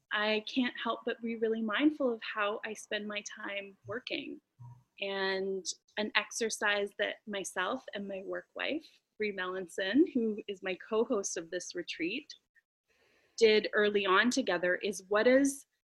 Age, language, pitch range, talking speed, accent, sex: 20-39, English, 190-250 Hz, 150 wpm, American, female